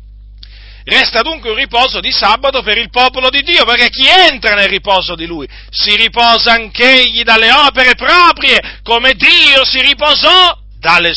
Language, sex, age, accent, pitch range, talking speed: Italian, male, 40-59, native, 150-225 Hz, 155 wpm